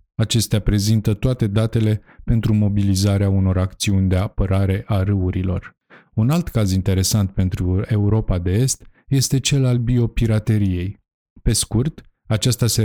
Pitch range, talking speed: 95-115 Hz, 130 wpm